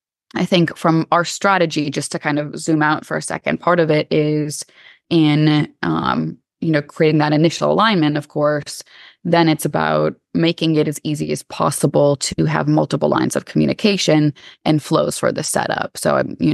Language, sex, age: English, female, 20-39